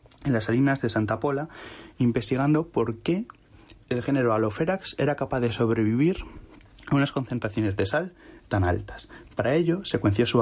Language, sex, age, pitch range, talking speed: Spanish, male, 30-49, 110-145 Hz, 155 wpm